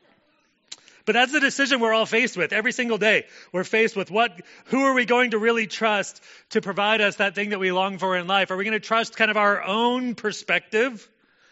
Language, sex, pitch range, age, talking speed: English, male, 165-215 Hz, 30-49, 225 wpm